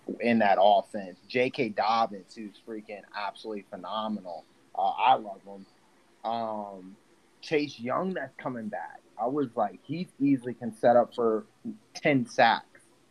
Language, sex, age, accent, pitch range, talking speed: English, male, 30-49, American, 110-140 Hz, 135 wpm